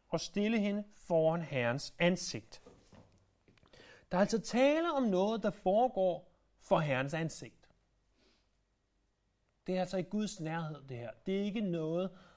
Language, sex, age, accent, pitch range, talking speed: Danish, male, 30-49, native, 130-185 Hz, 140 wpm